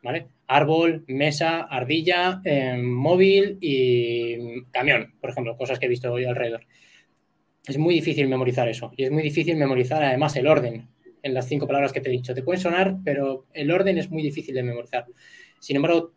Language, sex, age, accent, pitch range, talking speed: Spanish, male, 20-39, Spanish, 130-155 Hz, 185 wpm